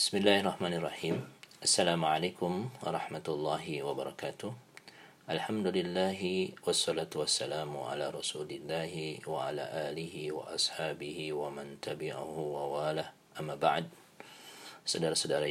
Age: 40-59